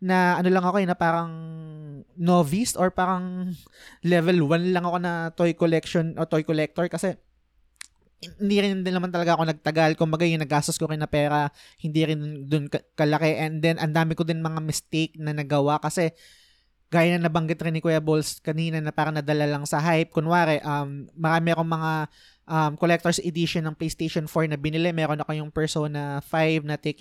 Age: 20-39